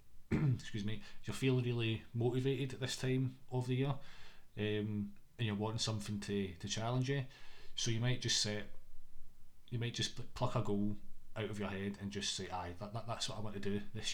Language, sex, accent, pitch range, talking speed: English, male, British, 100-115 Hz, 210 wpm